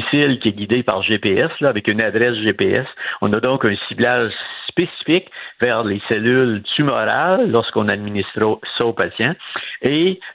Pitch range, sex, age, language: 100-120 Hz, male, 60-79, French